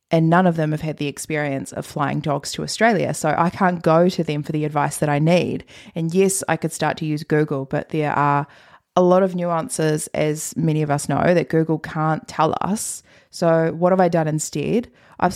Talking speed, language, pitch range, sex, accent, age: 225 wpm, English, 150-180 Hz, female, Australian, 20-39